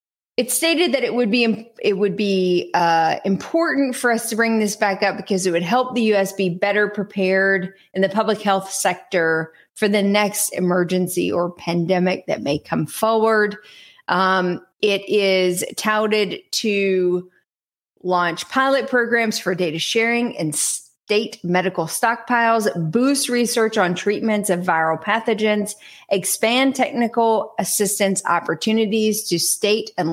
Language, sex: English, female